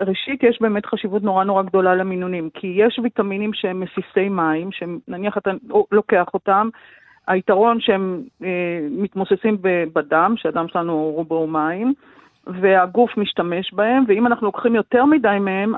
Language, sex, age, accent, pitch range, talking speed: Hebrew, female, 40-59, native, 185-230 Hz, 140 wpm